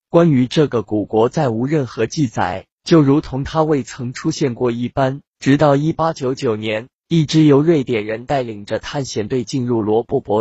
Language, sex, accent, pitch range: Chinese, male, native, 115-150 Hz